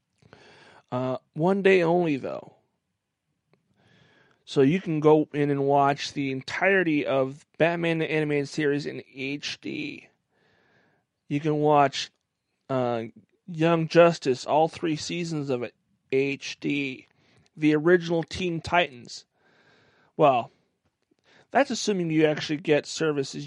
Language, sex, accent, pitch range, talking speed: English, male, American, 140-175 Hz, 115 wpm